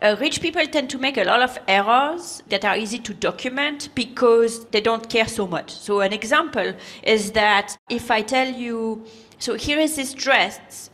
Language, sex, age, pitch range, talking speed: English, female, 40-59, 215-270 Hz, 190 wpm